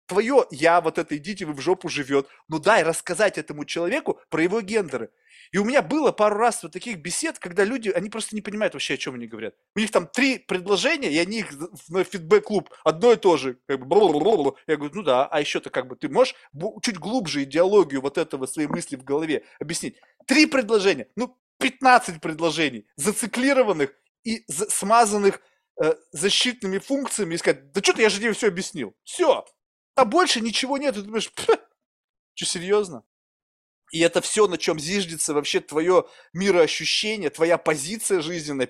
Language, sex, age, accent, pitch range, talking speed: Russian, male, 30-49, native, 165-225 Hz, 175 wpm